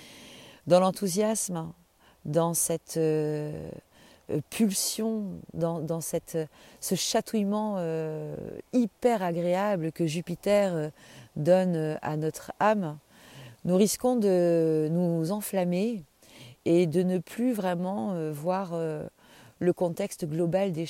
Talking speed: 100 wpm